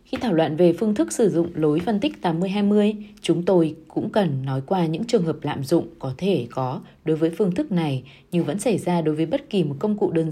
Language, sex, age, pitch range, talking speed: Vietnamese, female, 20-39, 150-195 Hz, 250 wpm